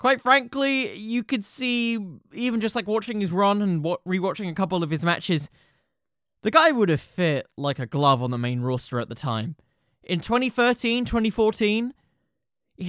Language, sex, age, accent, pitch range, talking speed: English, male, 20-39, British, 160-230 Hz, 170 wpm